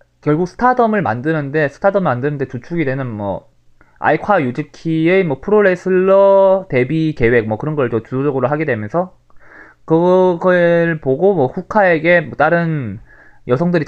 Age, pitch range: 20-39, 135-190 Hz